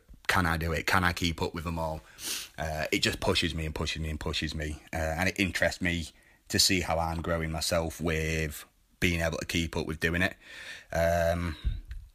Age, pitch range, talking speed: 30-49, 80-95 Hz, 210 wpm